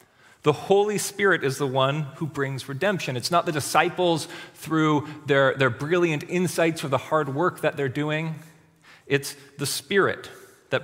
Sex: male